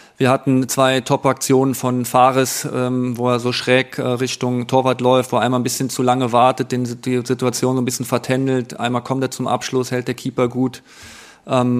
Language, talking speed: German, 210 wpm